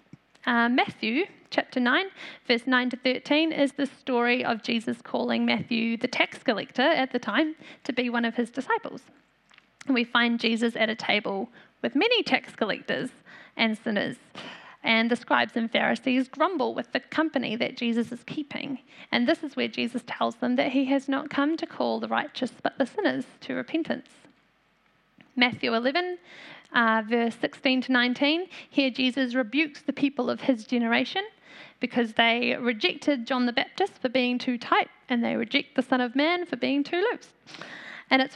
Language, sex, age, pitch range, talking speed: English, female, 10-29, 240-290 Hz, 175 wpm